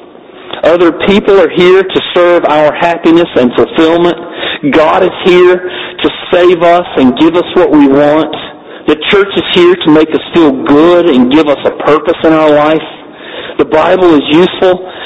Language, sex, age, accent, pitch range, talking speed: English, male, 50-69, American, 150-200 Hz, 170 wpm